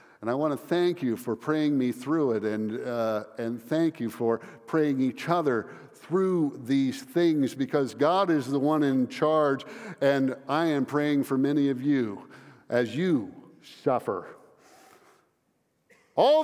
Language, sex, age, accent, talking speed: English, male, 50-69, American, 155 wpm